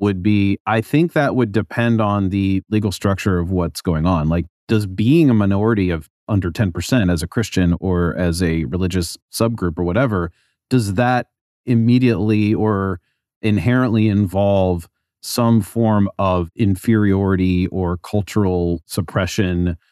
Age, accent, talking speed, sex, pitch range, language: 30-49, American, 140 wpm, male, 90-115 Hz, English